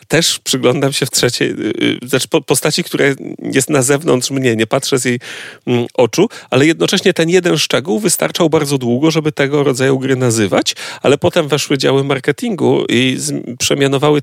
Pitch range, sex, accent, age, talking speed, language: 120-150 Hz, male, native, 40-59, 155 wpm, Polish